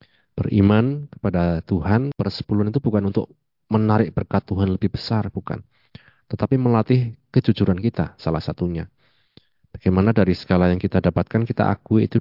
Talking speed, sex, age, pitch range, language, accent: 140 wpm, male, 30-49, 95-115 Hz, Indonesian, native